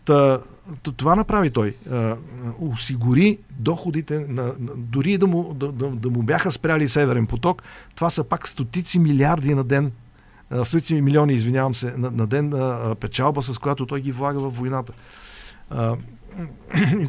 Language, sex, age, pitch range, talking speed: Bulgarian, male, 50-69, 110-140 Hz, 140 wpm